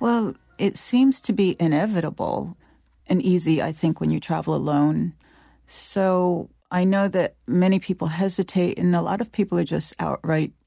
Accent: American